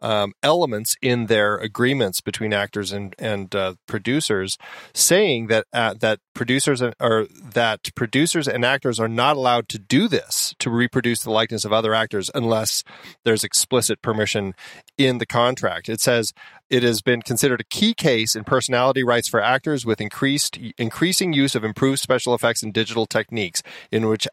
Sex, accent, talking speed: male, American, 170 wpm